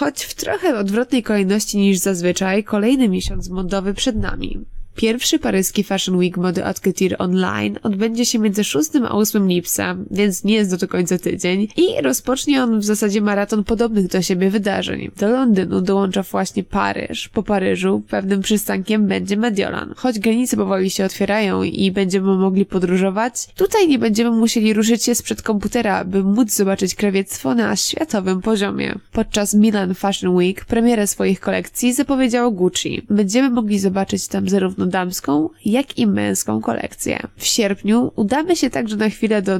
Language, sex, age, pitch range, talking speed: Polish, female, 20-39, 190-230 Hz, 160 wpm